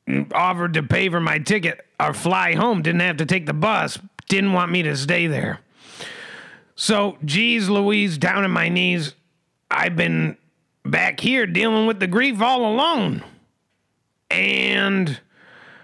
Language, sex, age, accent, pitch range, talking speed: English, male, 40-59, American, 170-215 Hz, 150 wpm